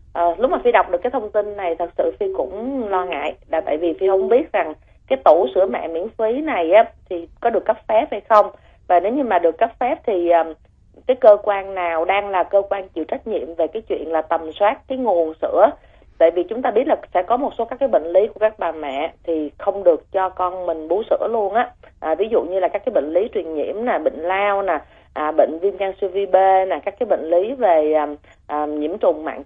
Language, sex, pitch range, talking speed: Vietnamese, female, 170-235 Hz, 250 wpm